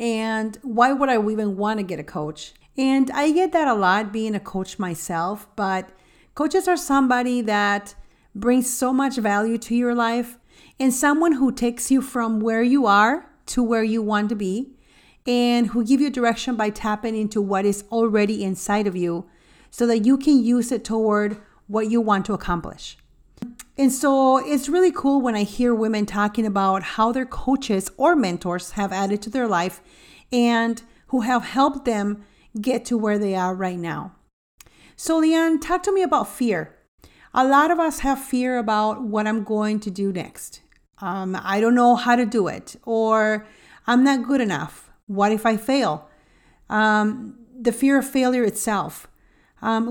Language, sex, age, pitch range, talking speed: English, female, 40-59, 205-255 Hz, 180 wpm